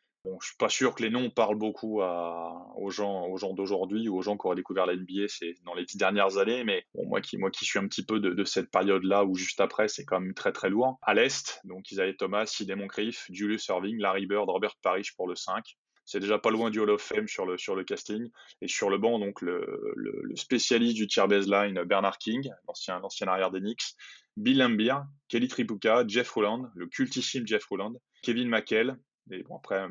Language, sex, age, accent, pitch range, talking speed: French, male, 20-39, French, 95-125 Hz, 235 wpm